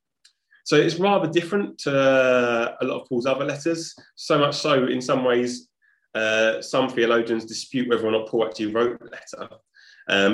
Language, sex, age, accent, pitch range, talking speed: English, male, 20-39, British, 125-175 Hz, 175 wpm